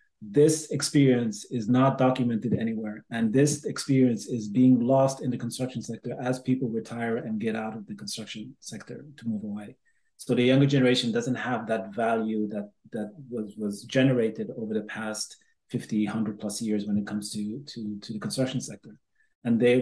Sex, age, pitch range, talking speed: male, 30-49, 110-130 Hz, 180 wpm